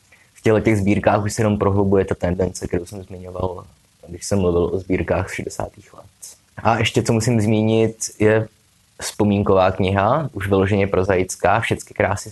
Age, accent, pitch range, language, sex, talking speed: 20-39, native, 85-105 Hz, Czech, male, 160 wpm